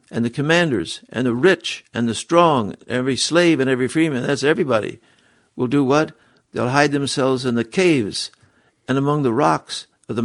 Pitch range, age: 115-145 Hz, 60-79